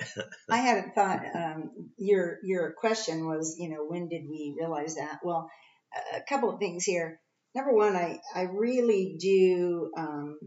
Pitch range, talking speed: 165-195 Hz, 160 wpm